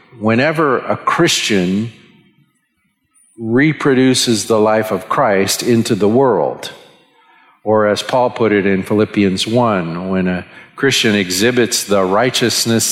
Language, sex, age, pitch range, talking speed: English, male, 50-69, 100-125 Hz, 115 wpm